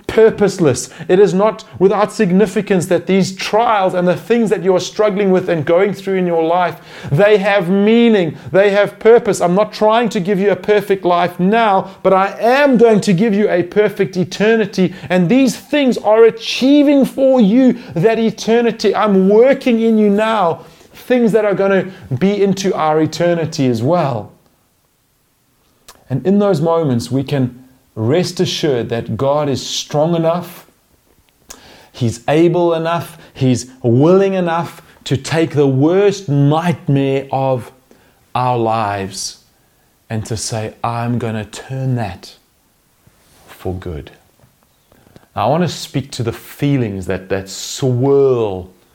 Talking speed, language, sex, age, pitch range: 150 wpm, English, male, 30-49, 125-200 Hz